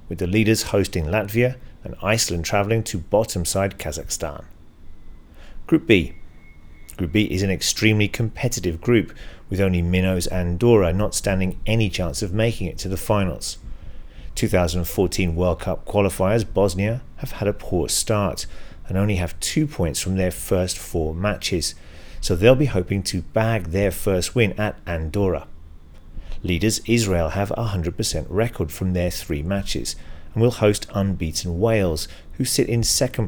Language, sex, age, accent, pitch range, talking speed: English, male, 40-59, British, 80-105 Hz, 155 wpm